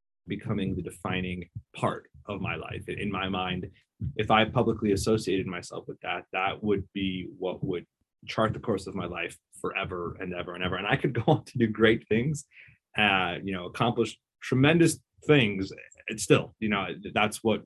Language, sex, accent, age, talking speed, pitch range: English, male, American, 20-39, 185 wpm, 95-120 Hz